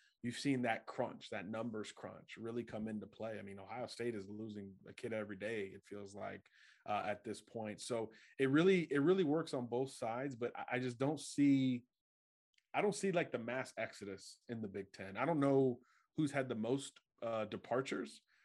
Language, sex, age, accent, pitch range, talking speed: English, male, 20-39, American, 105-130 Hz, 200 wpm